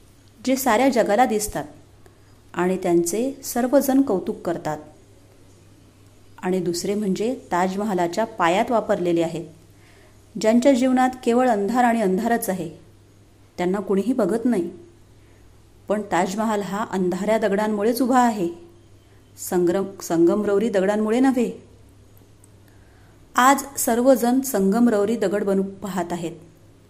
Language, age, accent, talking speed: Marathi, 30-49, native, 100 wpm